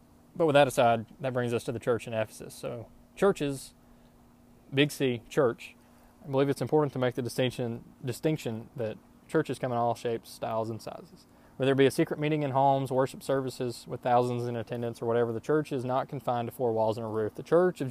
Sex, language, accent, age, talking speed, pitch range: male, English, American, 20-39, 220 wpm, 115-135 Hz